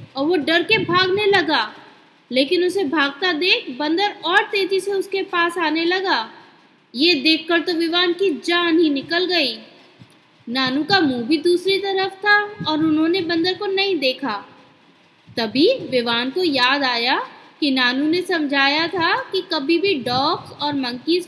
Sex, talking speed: female, 160 wpm